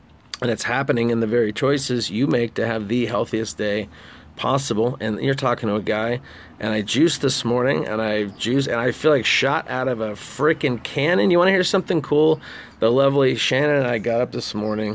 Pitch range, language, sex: 110-130 Hz, English, male